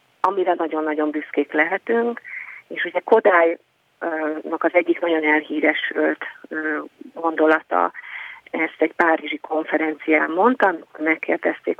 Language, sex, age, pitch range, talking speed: Hungarian, female, 30-49, 160-195 Hz, 100 wpm